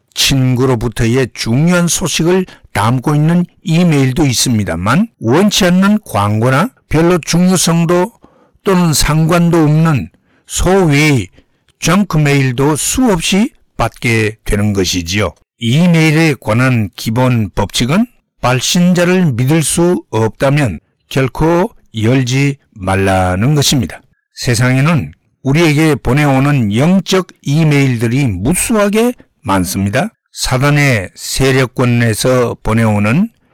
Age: 60-79